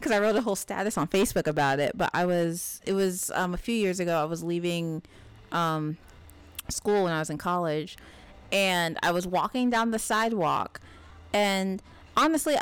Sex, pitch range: female, 165-215 Hz